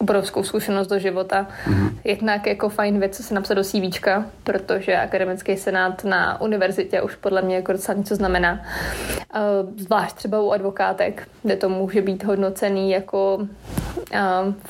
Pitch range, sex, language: 200-220 Hz, female, Czech